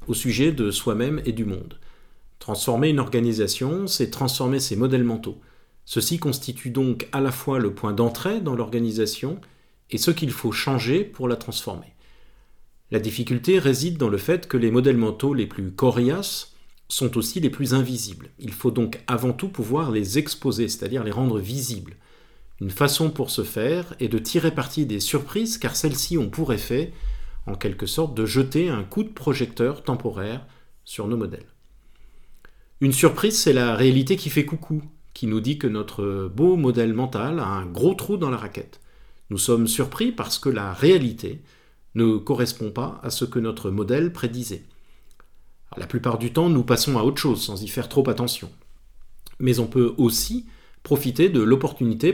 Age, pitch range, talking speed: 40-59, 115-145 Hz, 175 wpm